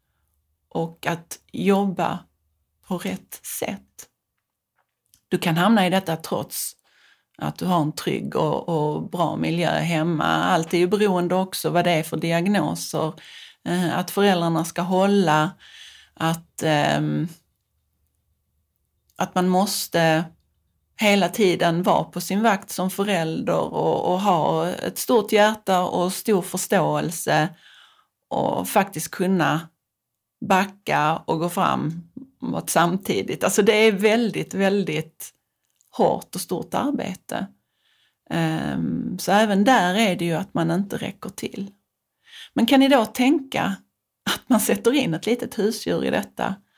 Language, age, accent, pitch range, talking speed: Swedish, 40-59, native, 160-210 Hz, 130 wpm